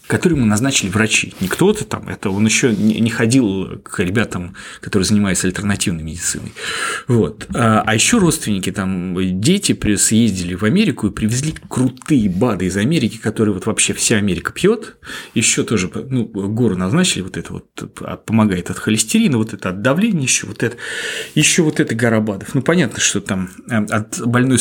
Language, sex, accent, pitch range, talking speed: Russian, male, native, 105-130 Hz, 165 wpm